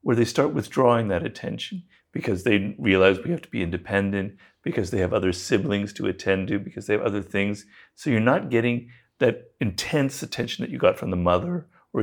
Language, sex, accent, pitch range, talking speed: English, male, American, 100-130 Hz, 205 wpm